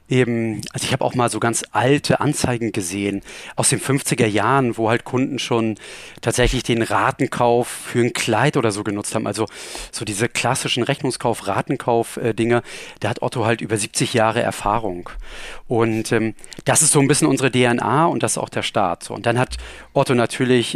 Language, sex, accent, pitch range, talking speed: German, male, German, 110-140 Hz, 190 wpm